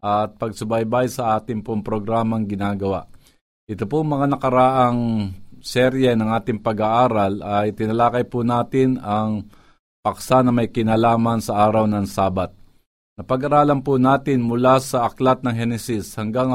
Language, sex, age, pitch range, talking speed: Filipino, male, 50-69, 105-130 Hz, 135 wpm